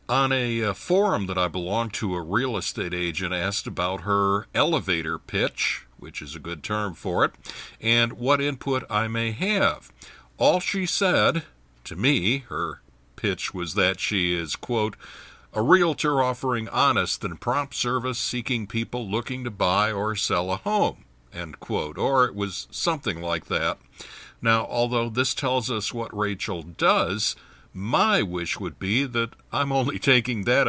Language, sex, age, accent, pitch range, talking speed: English, male, 60-79, American, 100-130 Hz, 160 wpm